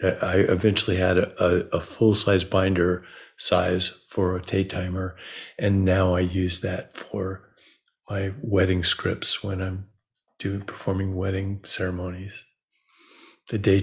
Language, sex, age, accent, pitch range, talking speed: English, male, 50-69, American, 95-115 Hz, 130 wpm